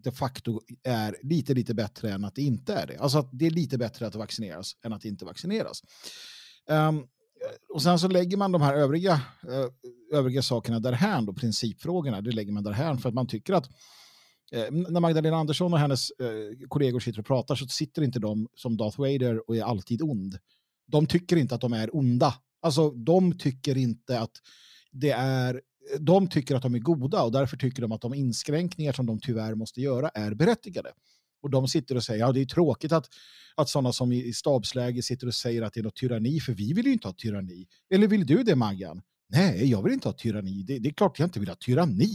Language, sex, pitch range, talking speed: Swedish, male, 115-160 Hz, 220 wpm